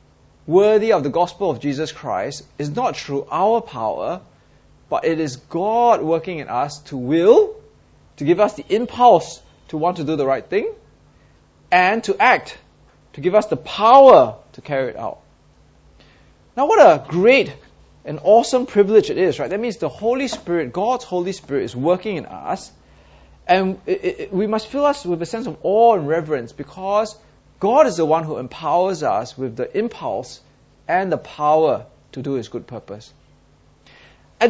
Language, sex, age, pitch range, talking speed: English, male, 30-49, 145-220 Hz, 170 wpm